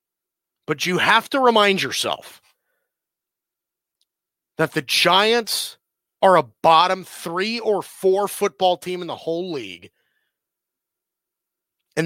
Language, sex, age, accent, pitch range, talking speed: English, male, 30-49, American, 155-215 Hz, 110 wpm